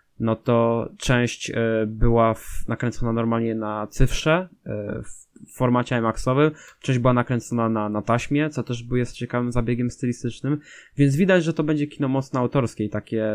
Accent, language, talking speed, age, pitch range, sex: native, Polish, 150 wpm, 20-39, 115-135 Hz, male